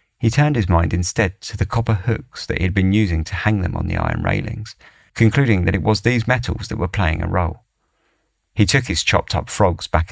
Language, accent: English, British